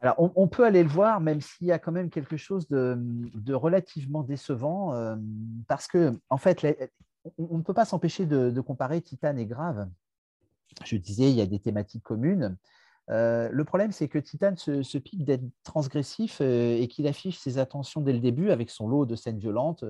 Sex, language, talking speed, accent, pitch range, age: male, French, 215 wpm, French, 120-170 Hz, 40-59